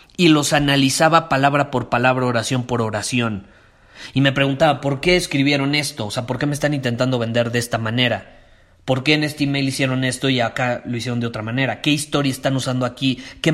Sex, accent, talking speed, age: male, Mexican, 210 wpm, 30-49